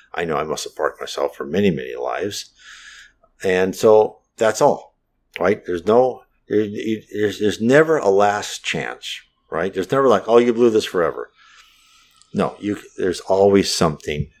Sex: male